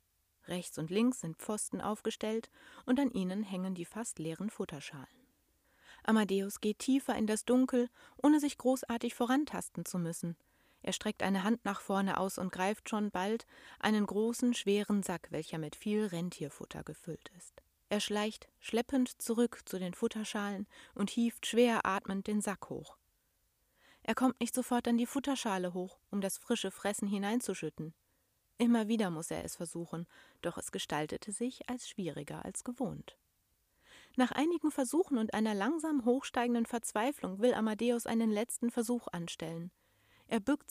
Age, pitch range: 30-49, 180-235 Hz